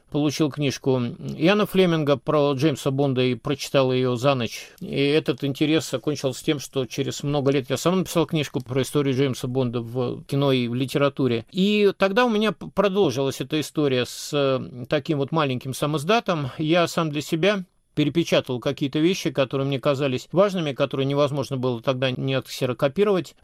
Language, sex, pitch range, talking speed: Russian, male, 135-165 Hz, 160 wpm